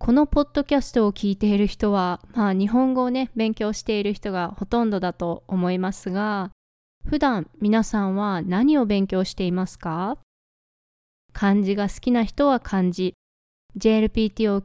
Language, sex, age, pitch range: Japanese, female, 20-39, 195-250 Hz